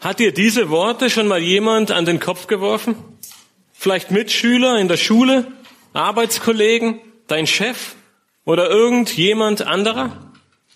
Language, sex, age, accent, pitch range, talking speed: German, male, 40-59, German, 170-225 Hz, 125 wpm